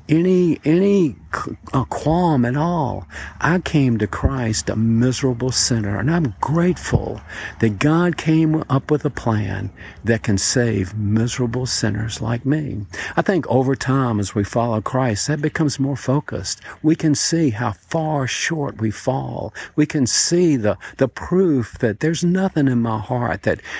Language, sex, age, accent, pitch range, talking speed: English, male, 50-69, American, 105-140 Hz, 155 wpm